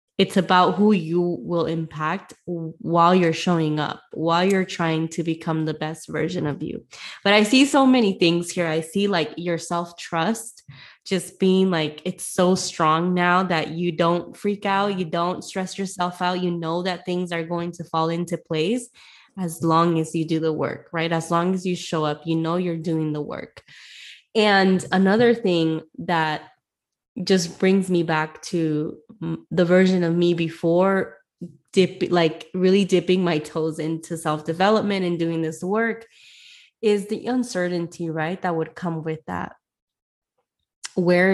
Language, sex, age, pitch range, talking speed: English, female, 20-39, 165-185 Hz, 165 wpm